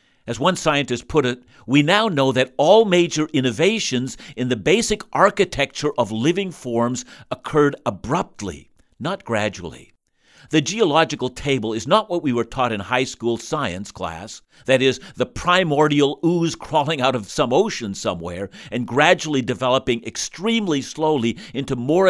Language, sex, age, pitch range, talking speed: English, male, 50-69, 125-175 Hz, 150 wpm